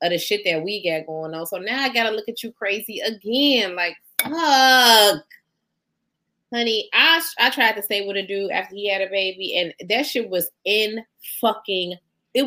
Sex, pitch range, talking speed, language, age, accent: female, 185-255 Hz, 190 wpm, English, 20-39, American